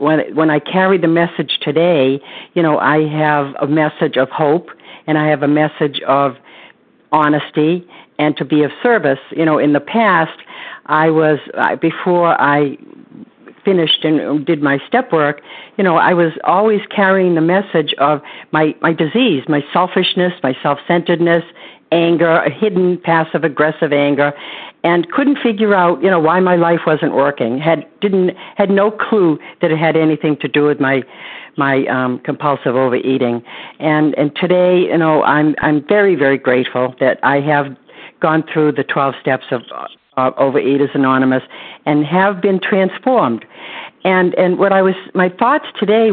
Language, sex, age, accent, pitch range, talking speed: English, female, 60-79, American, 145-180 Hz, 165 wpm